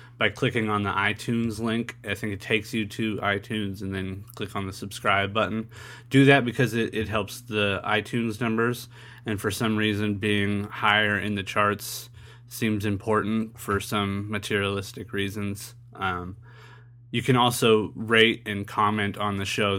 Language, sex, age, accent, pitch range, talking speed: English, male, 20-39, American, 105-120 Hz, 165 wpm